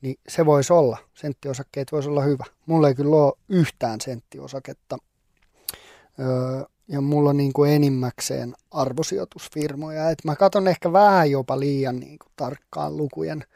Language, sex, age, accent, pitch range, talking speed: Finnish, male, 30-49, native, 135-155 Hz, 135 wpm